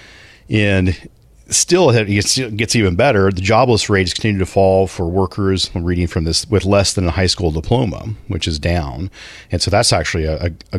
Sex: male